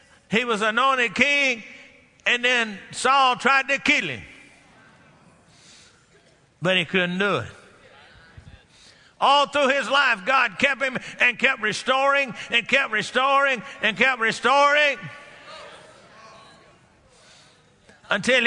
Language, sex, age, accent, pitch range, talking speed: English, male, 50-69, American, 230-275 Hz, 105 wpm